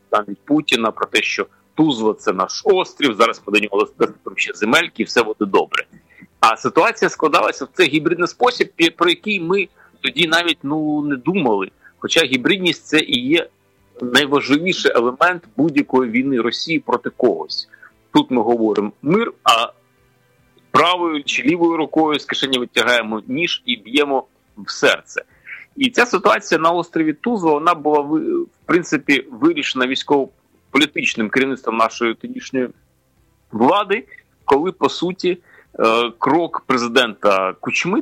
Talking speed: 135 wpm